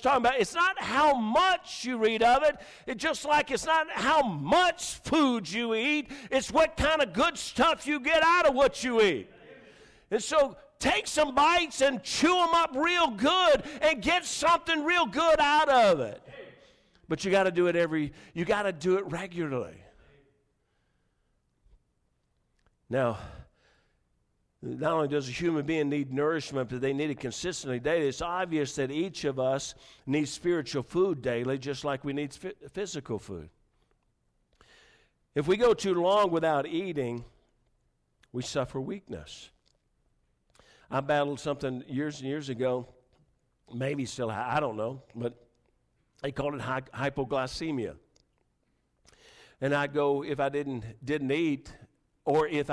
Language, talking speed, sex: English, 155 wpm, male